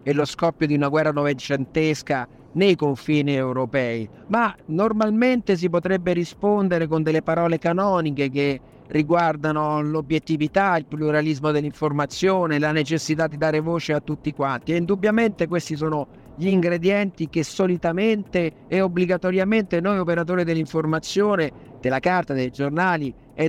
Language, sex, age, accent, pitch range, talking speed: Italian, male, 50-69, native, 155-190 Hz, 130 wpm